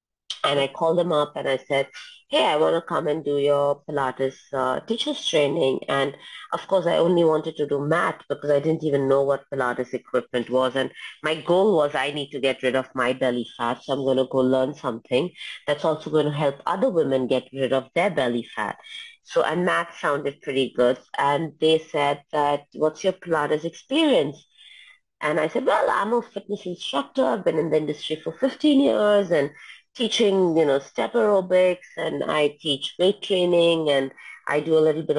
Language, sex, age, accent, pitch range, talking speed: English, female, 30-49, Indian, 135-175 Hz, 200 wpm